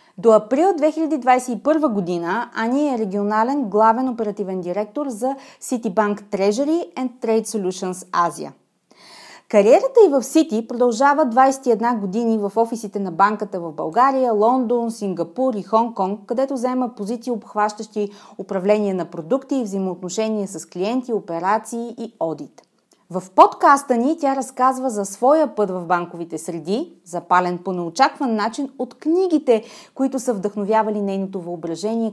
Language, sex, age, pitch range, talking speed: Bulgarian, female, 30-49, 195-260 Hz, 130 wpm